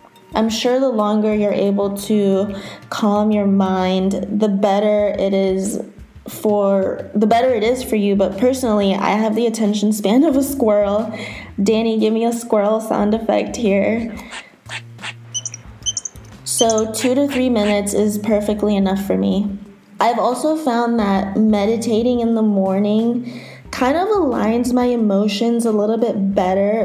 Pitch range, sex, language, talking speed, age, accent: 200-235 Hz, female, English, 150 wpm, 20-39, American